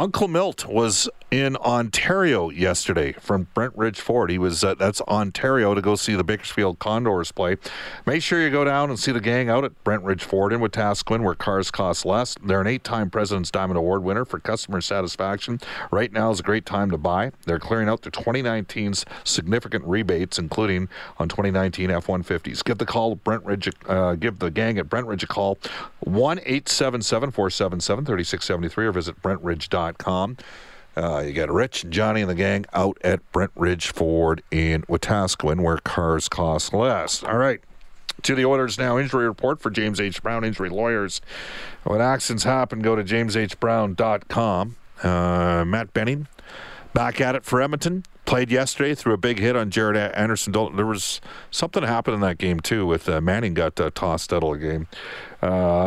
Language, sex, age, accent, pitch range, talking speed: English, male, 50-69, American, 95-115 Hz, 185 wpm